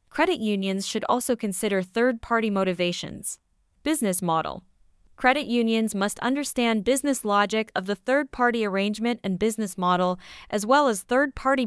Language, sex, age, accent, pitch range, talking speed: English, female, 20-39, American, 190-245 Hz, 135 wpm